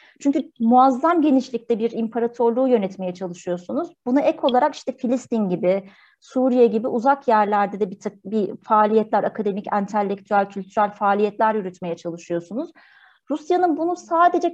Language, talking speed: Turkish, 130 wpm